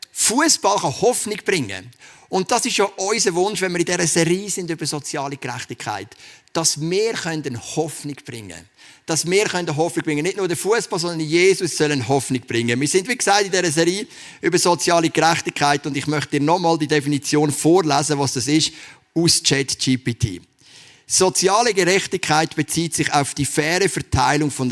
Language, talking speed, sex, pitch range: German, 165 wpm, male, 130-170 Hz